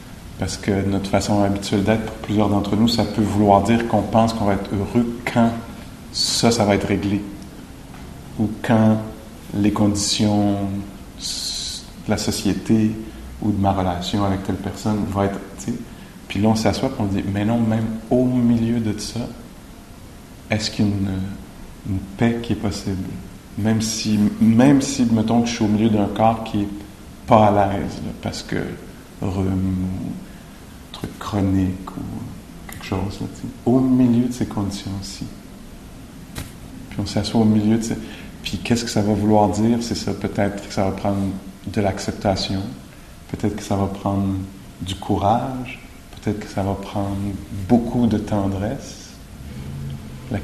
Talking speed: 165 wpm